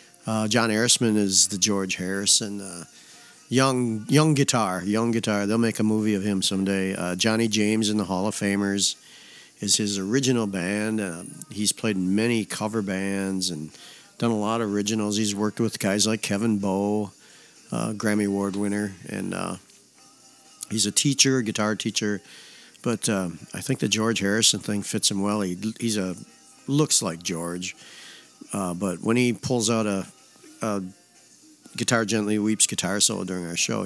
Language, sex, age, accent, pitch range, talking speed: English, male, 50-69, American, 100-115 Hz, 170 wpm